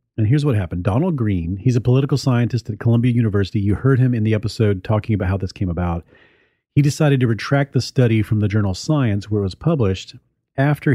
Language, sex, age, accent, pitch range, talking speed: English, male, 40-59, American, 100-135 Hz, 220 wpm